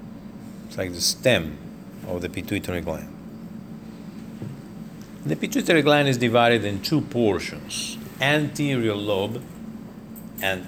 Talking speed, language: 100 wpm, English